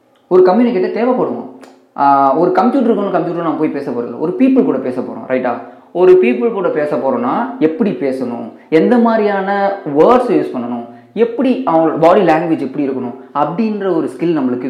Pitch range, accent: 125-210 Hz, native